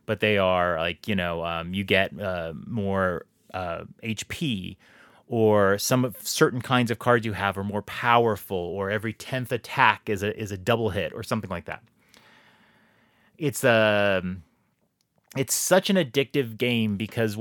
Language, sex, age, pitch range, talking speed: English, male, 30-49, 100-125 Hz, 160 wpm